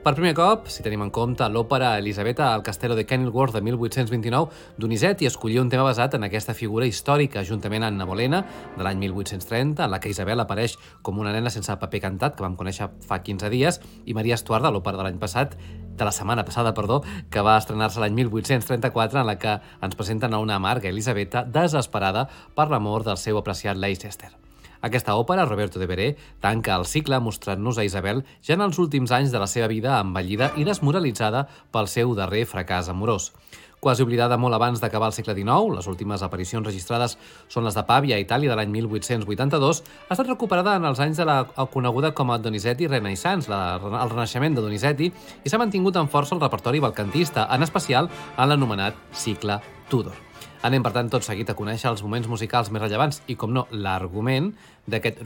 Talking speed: 195 wpm